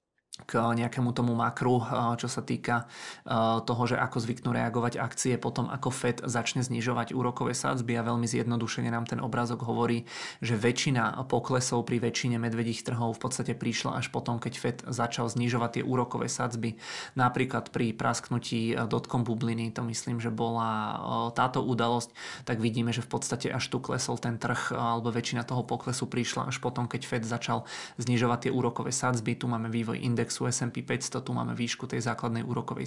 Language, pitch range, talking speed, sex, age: Czech, 115-125 Hz, 170 wpm, male, 30-49